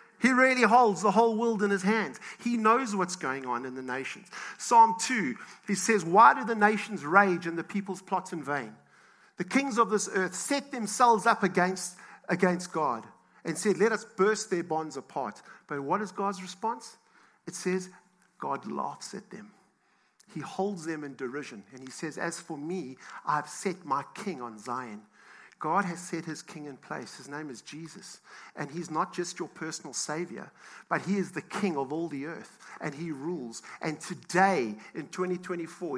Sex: male